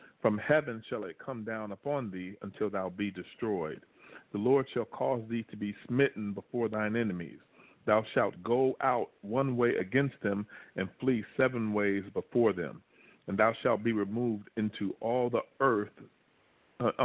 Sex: male